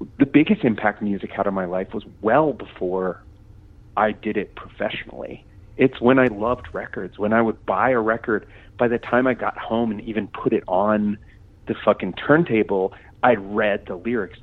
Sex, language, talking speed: male, English, 185 wpm